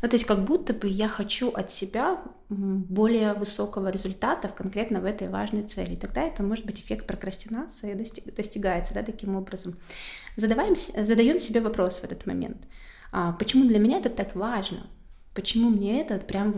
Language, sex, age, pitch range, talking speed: Russian, female, 20-39, 195-220 Hz, 155 wpm